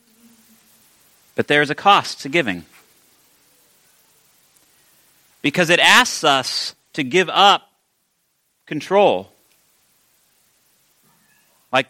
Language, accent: English, American